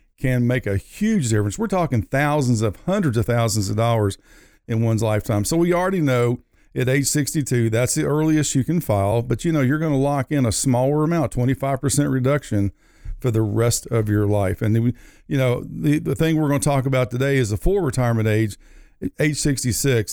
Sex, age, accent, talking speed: male, 50-69, American, 205 wpm